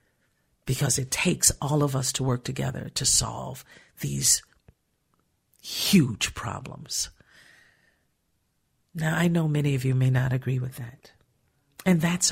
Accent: American